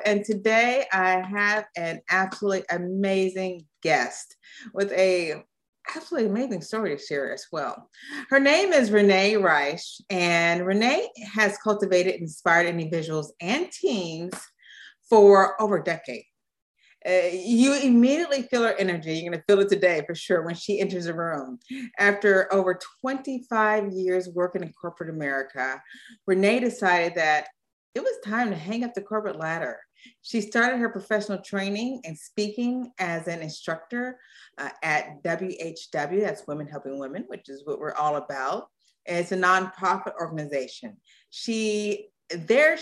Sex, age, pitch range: female, 30-49, 170-220 Hz